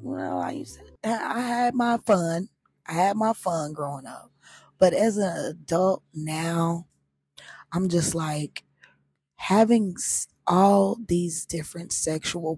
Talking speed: 120 wpm